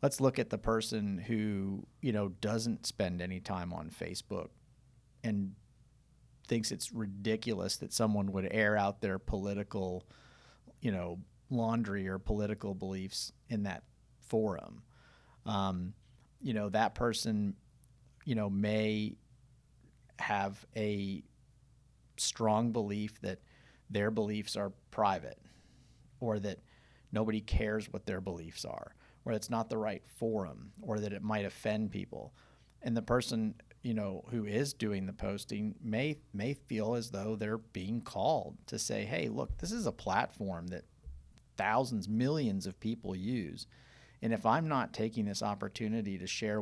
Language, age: English, 40-59